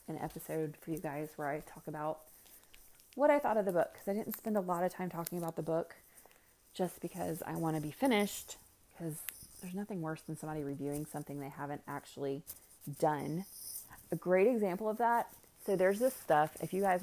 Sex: female